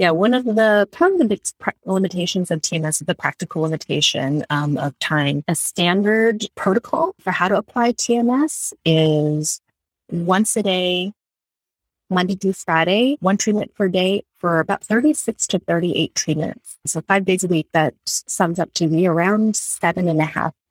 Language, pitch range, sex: English, 150-195 Hz, female